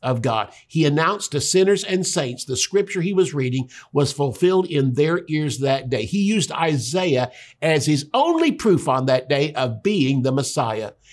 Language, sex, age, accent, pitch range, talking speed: English, male, 50-69, American, 140-195 Hz, 185 wpm